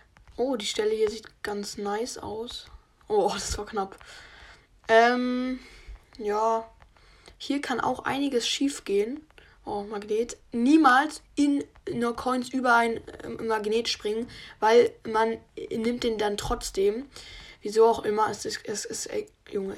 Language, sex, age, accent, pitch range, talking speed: German, female, 10-29, German, 220-305 Hz, 145 wpm